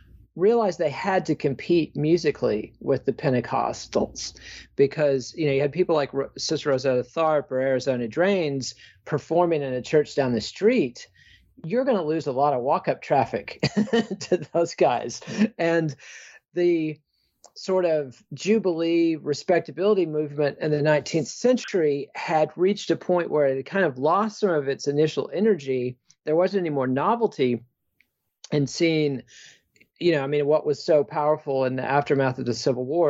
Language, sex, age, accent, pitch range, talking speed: English, male, 40-59, American, 130-165 Hz, 160 wpm